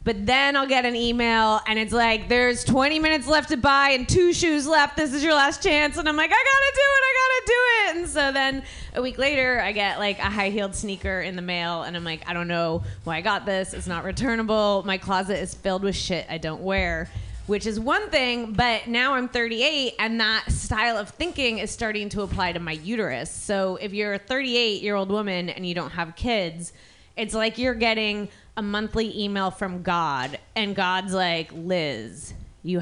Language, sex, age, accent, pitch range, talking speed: English, female, 20-39, American, 195-270 Hz, 225 wpm